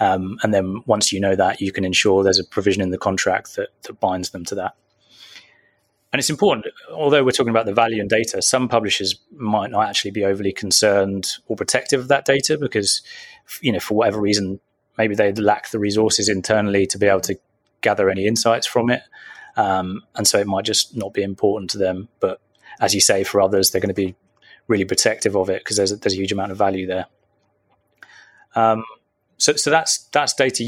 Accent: British